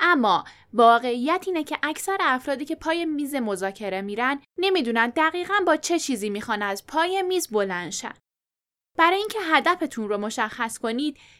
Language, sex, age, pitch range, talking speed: Persian, female, 10-29, 235-345 Hz, 145 wpm